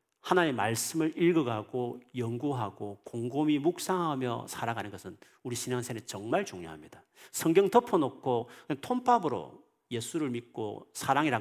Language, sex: Korean, male